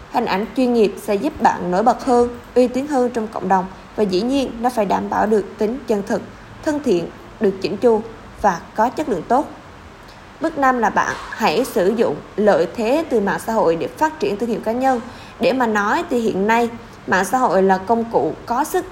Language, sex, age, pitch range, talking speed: Vietnamese, female, 20-39, 205-250 Hz, 225 wpm